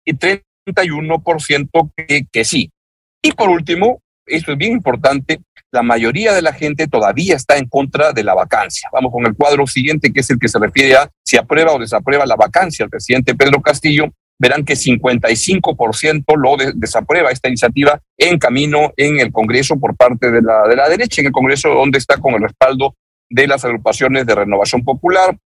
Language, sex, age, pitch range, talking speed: Spanish, male, 50-69, 125-155 Hz, 190 wpm